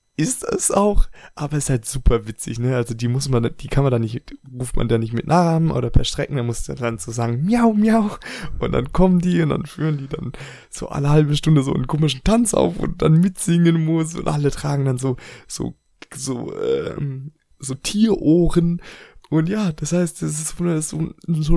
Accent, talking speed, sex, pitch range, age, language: German, 210 wpm, male, 130-165 Hz, 20-39, German